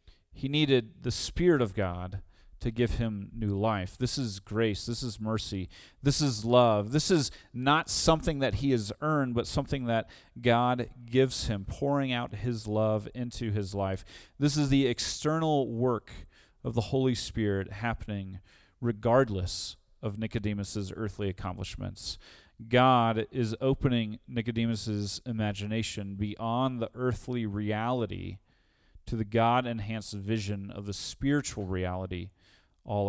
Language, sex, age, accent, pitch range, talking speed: English, male, 30-49, American, 100-125 Hz, 135 wpm